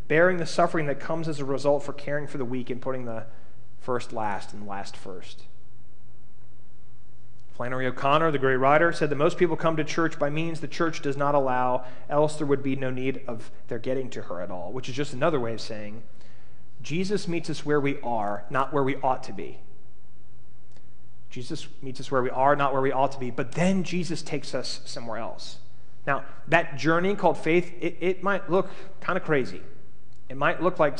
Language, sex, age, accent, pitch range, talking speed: English, male, 30-49, American, 125-155 Hz, 205 wpm